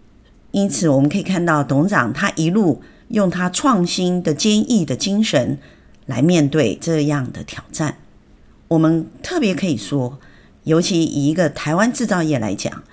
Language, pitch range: Chinese, 135-180 Hz